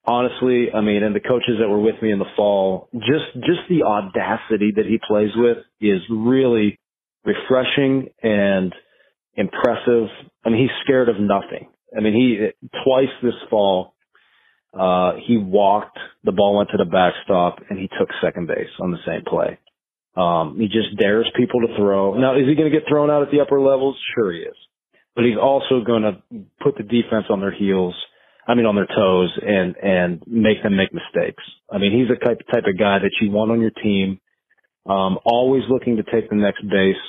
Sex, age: male, 30-49